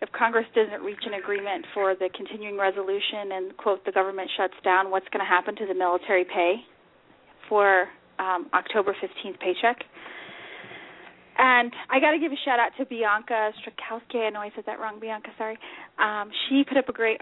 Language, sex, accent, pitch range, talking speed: English, female, American, 195-240 Hz, 190 wpm